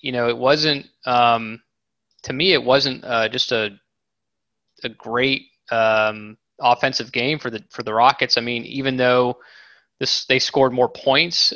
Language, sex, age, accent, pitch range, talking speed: English, male, 20-39, American, 115-130 Hz, 160 wpm